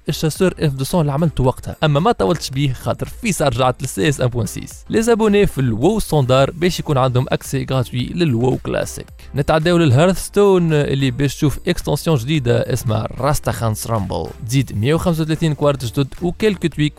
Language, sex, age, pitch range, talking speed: Arabic, male, 20-39, 125-170 Hz, 150 wpm